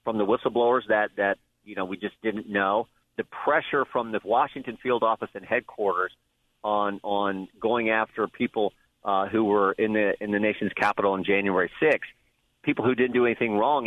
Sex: male